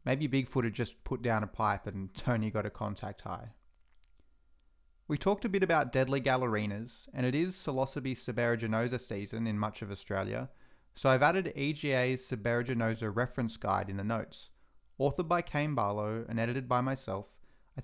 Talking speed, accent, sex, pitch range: 170 wpm, Australian, male, 110-140 Hz